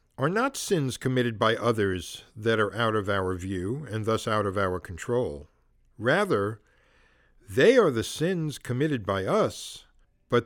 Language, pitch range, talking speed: English, 105-135 Hz, 155 wpm